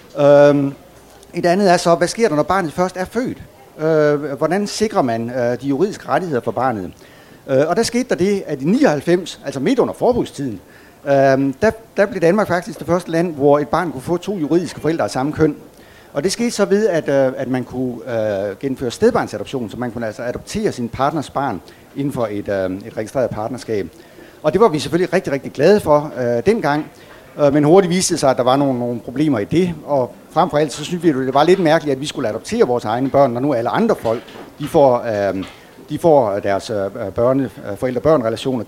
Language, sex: Danish, male